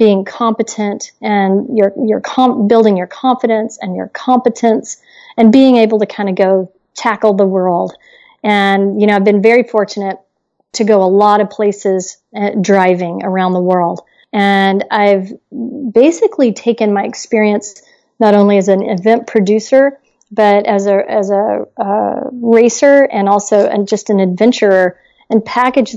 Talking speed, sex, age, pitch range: 155 wpm, female, 40-59, 205-235 Hz